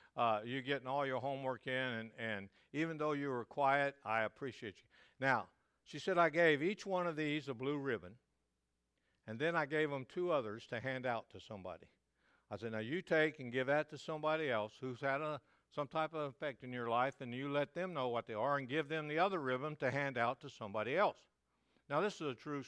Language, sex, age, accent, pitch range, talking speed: English, male, 60-79, American, 120-155 Hz, 230 wpm